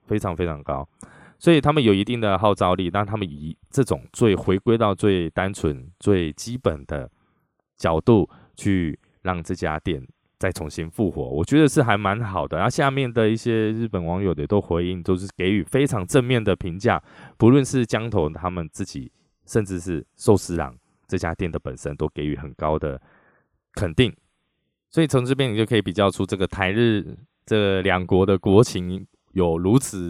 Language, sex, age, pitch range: Chinese, male, 20-39, 85-110 Hz